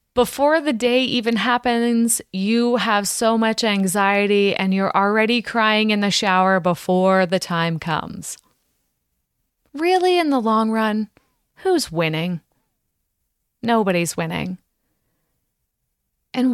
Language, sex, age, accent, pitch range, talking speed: English, female, 20-39, American, 190-250 Hz, 115 wpm